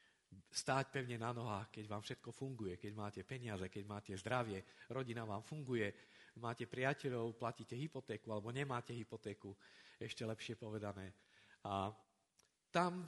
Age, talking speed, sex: 50-69, 135 wpm, male